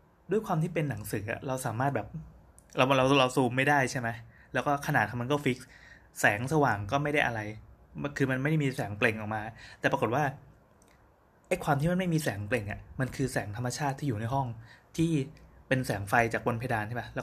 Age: 20-39